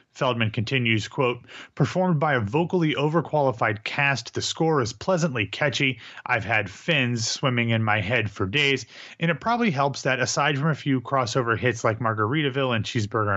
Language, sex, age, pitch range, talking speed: English, male, 30-49, 115-140 Hz, 170 wpm